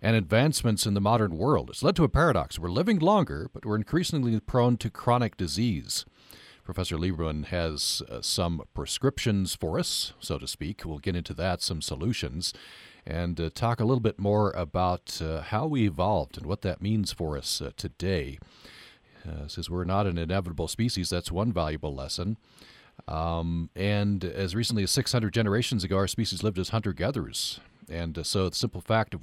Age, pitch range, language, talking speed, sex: 40-59, 90-115 Hz, English, 180 wpm, male